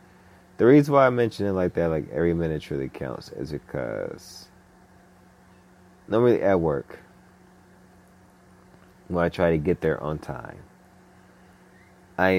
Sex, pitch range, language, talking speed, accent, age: male, 80-100 Hz, English, 135 wpm, American, 30-49